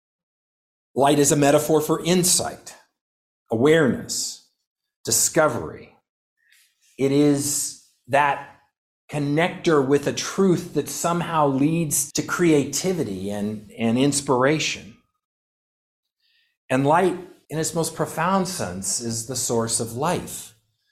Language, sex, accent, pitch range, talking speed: English, male, American, 120-160 Hz, 100 wpm